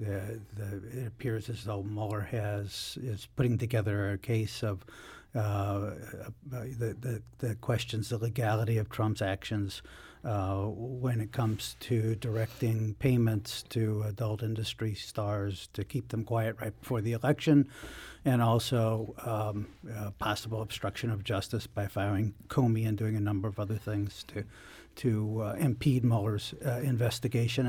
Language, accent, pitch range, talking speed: English, American, 105-125 Hz, 150 wpm